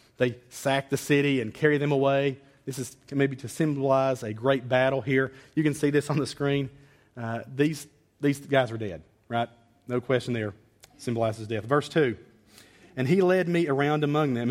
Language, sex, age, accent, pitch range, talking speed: English, male, 40-59, American, 110-140 Hz, 185 wpm